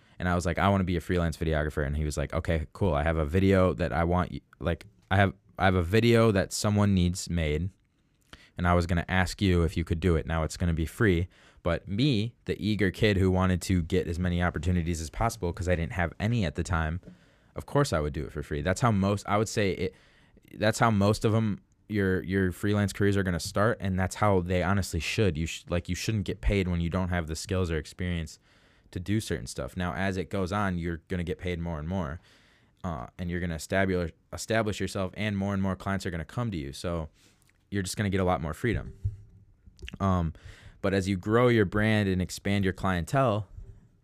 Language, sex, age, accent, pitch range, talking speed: English, male, 20-39, American, 85-100 Hz, 245 wpm